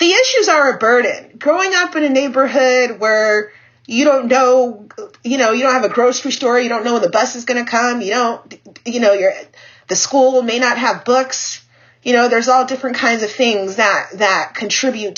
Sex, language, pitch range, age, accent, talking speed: female, English, 210-265 Hz, 30-49, American, 215 wpm